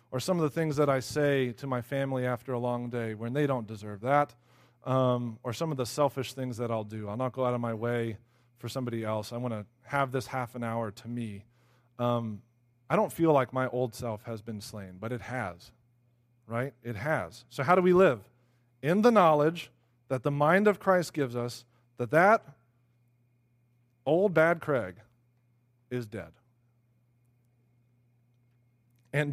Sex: male